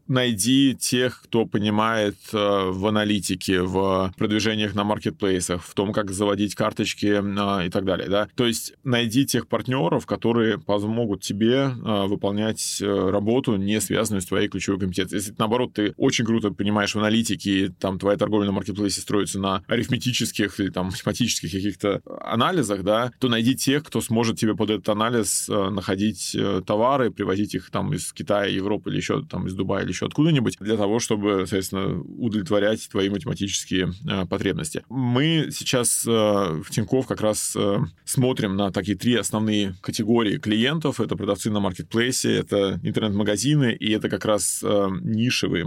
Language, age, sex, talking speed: Russian, 20-39, male, 155 wpm